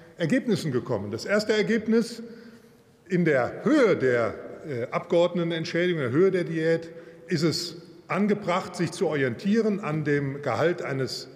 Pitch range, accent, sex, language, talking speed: 155-200 Hz, German, male, German, 130 wpm